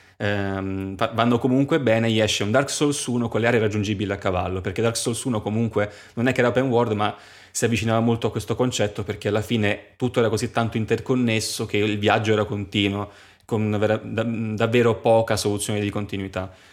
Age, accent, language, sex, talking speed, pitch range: 20-39, native, Italian, male, 195 wpm, 100-115 Hz